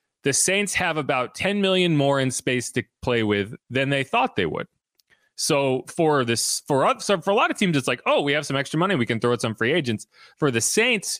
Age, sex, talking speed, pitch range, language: 30-49, male, 245 wpm, 115-150 Hz, English